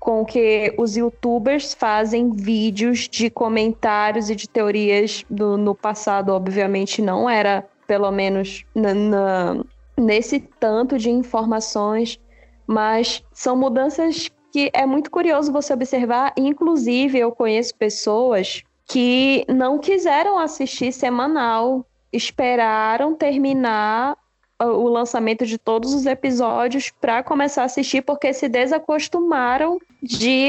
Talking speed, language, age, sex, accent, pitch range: 110 wpm, Portuguese, 10-29, female, Brazilian, 215-265 Hz